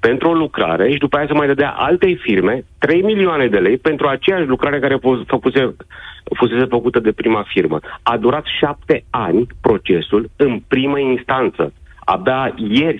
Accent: native